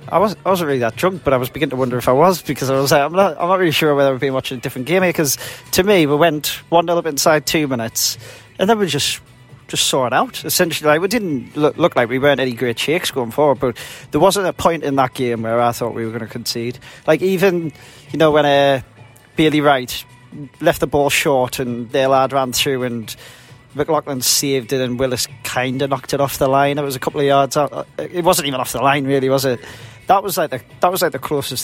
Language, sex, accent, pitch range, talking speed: English, male, British, 125-155 Hz, 260 wpm